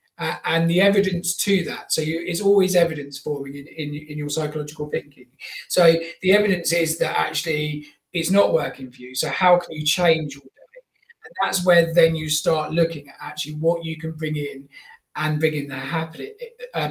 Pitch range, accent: 155-185 Hz, British